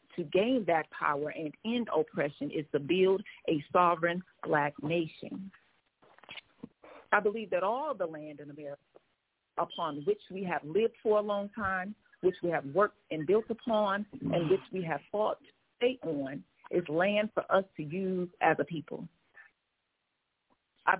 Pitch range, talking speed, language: 155-200 Hz, 160 wpm, English